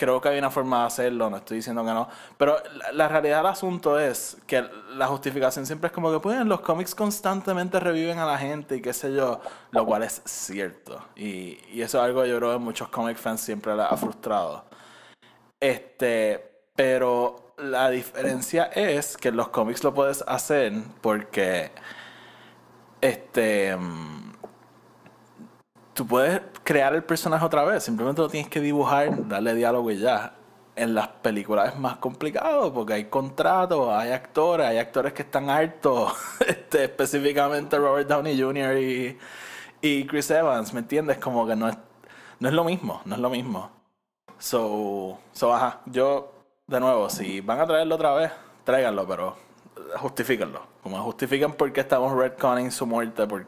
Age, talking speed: 20-39, 170 wpm